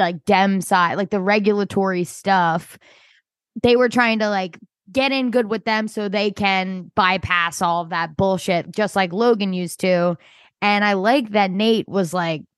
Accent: American